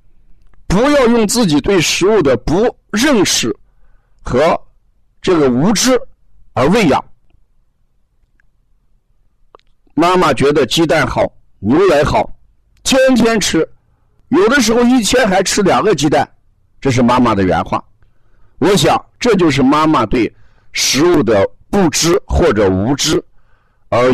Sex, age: male, 60-79